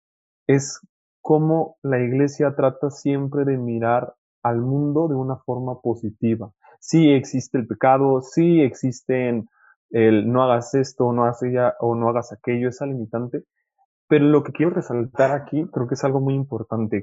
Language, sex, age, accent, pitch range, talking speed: Spanish, male, 20-39, Mexican, 120-145 Hz, 160 wpm